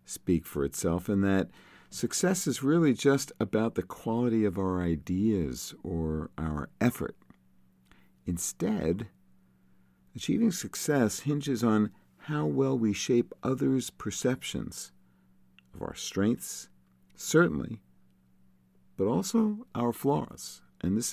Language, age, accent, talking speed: English, 50-69, American, 110 wpm